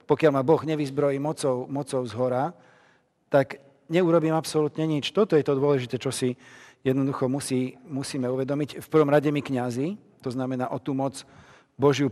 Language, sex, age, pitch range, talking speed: Slovak, male, 40-59, 130-150 Hz, 165 wpm